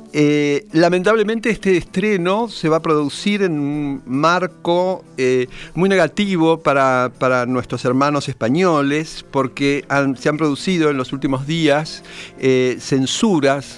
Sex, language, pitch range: male, Spanish, 120-150 Hz